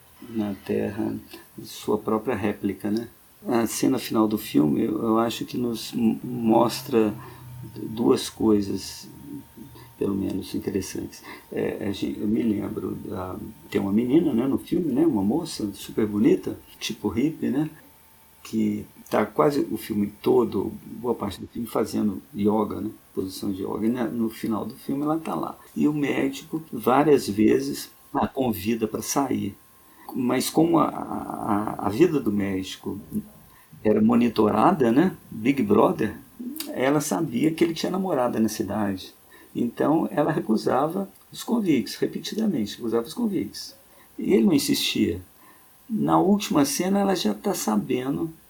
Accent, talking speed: Brazilian, 145 wpm